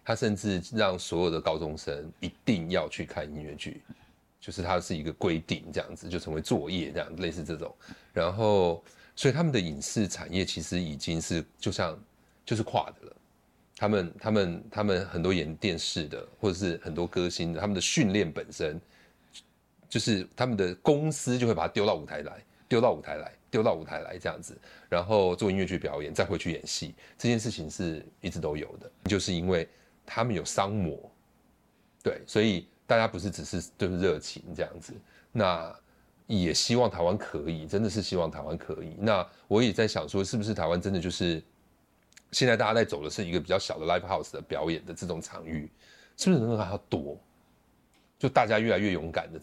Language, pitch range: Chinese, 85-110 Hz